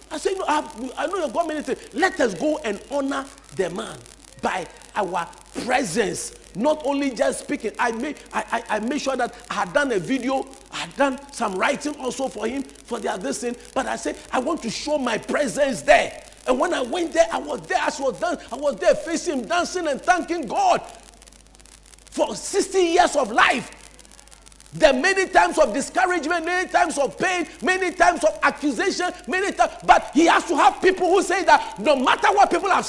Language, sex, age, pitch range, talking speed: English, male, 50-69, 285-370 Hz, 205 wpm